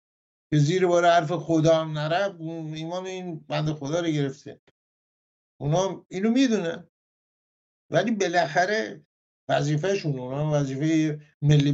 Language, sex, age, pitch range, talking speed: English, male, 50-69, 155-210 Hz, 105 wpm